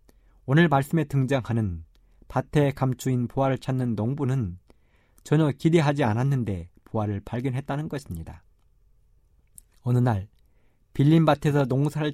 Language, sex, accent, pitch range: Korean, male, native, 110-150 Hz